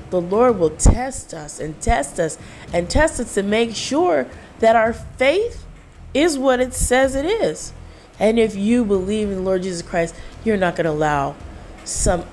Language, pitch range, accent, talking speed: English, 165-225 Hz, American, 185 wpm